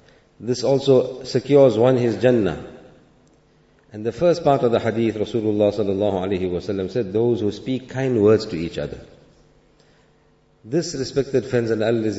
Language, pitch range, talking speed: English, 110-135 Hz, 155 wpm